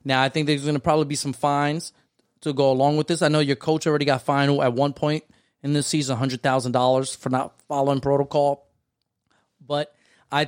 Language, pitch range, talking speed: English, 140-175 Hz, 200 wpm